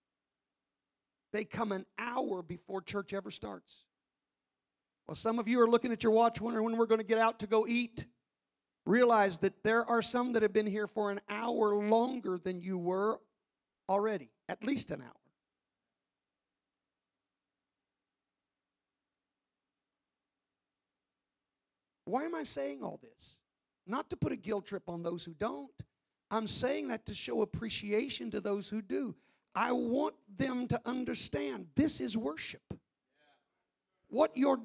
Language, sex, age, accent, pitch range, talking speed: English, male, 50-69, American, 170-225 Hz, 145 wpm